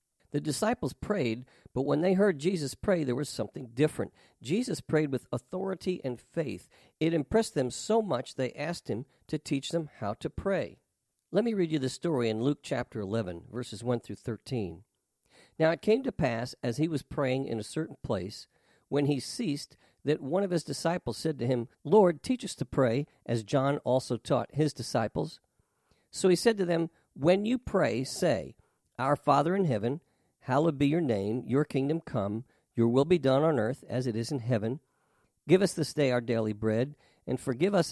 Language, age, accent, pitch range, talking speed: English, 50-69, American, 120-160 Hz, 195 wpm